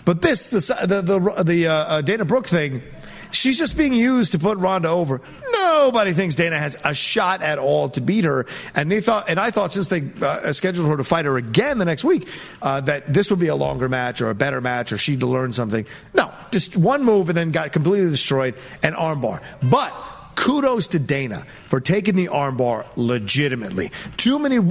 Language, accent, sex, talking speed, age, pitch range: English, American, male, 205 wpm, 40-59, 140-210 Hz